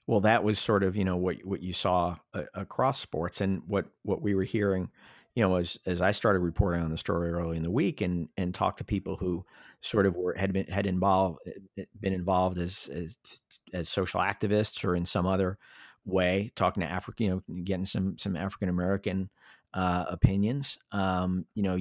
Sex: male